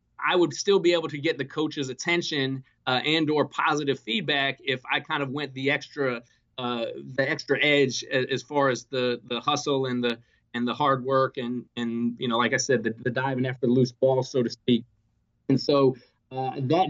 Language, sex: English, male